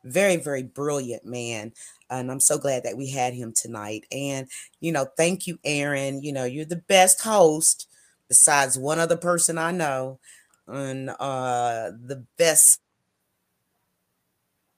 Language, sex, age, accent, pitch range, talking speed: English, female, 40-59, American, 135-180 Hz, 140 wpm